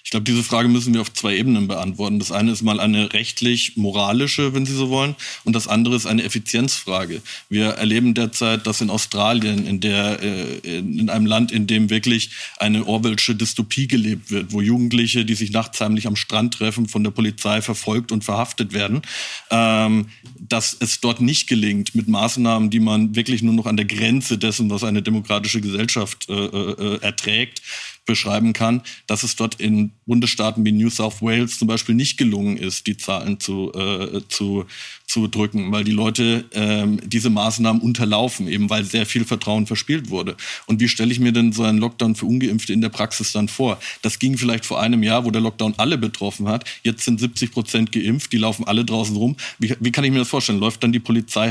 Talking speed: 190 wpm